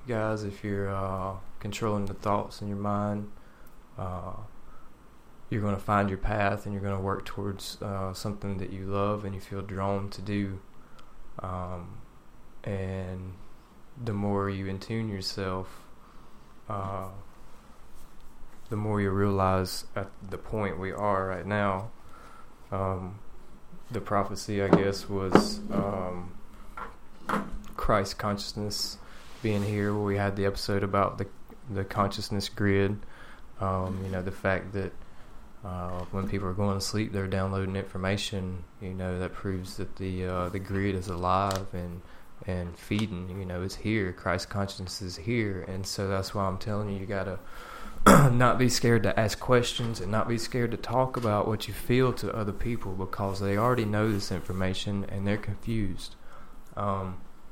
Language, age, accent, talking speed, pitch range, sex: English, 20-39, American, 155 wpm, 95-105 Hz, male